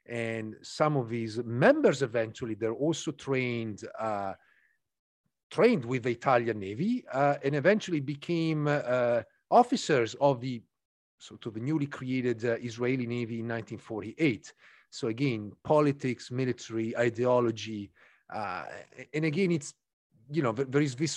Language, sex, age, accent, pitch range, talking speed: English, male, 40-59, Italian, 120-155 Hz, 135 wpm